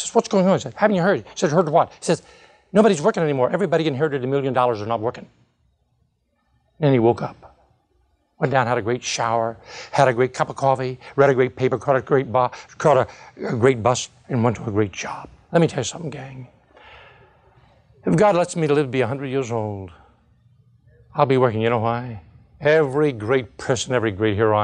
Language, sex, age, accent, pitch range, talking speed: English, male, 60-79, American, 115-140 Hz, 220 wpm